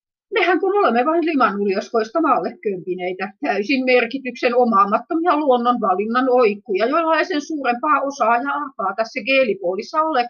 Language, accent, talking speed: Finnish, native, 110 wpm